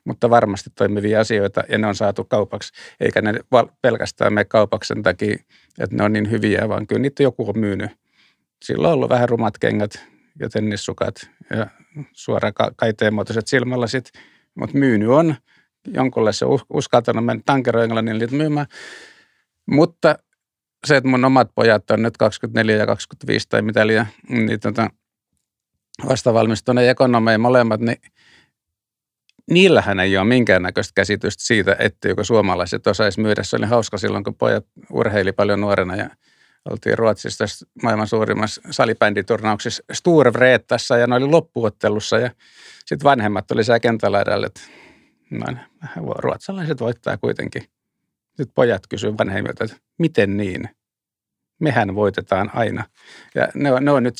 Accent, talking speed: native, 135 wpm